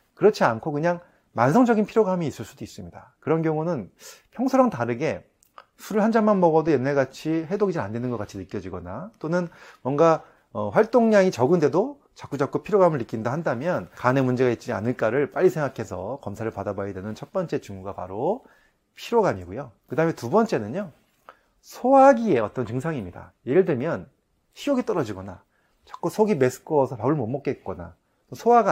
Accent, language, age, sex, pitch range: native, Korean, 30-49, male, 110-170 Hz